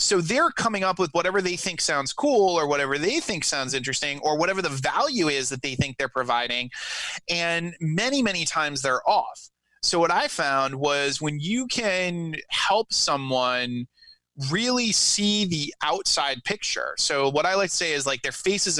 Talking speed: 180 wpm